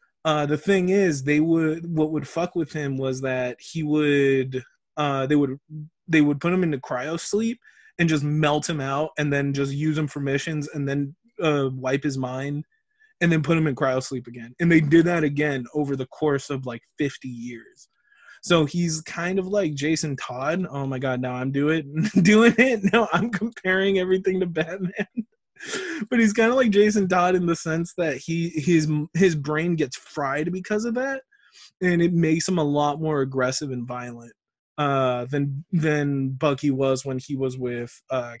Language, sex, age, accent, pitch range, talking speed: English, male, 20-39, American, 140-185 Hz, 190 wpm